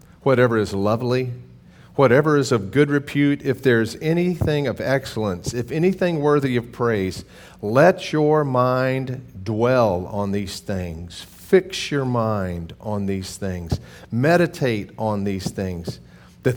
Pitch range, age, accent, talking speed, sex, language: 100-135 Hz, 50-69, American, 130 wpm, male, English